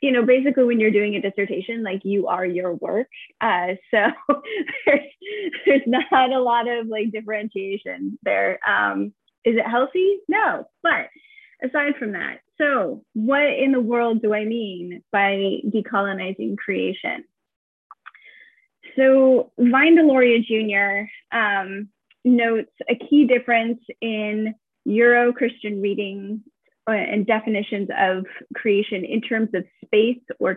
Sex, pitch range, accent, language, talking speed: female, 205-265 Hz, American, English, 130 wpm